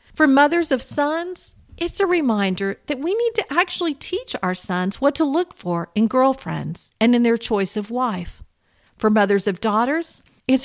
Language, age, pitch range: English, 50-69, 200-315 Hz